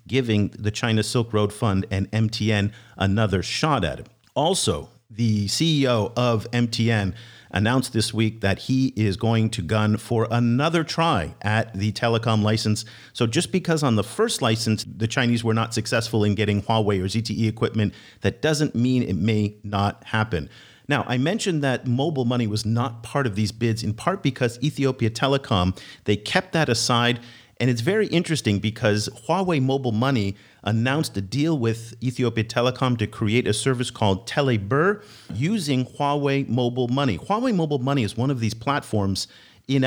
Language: English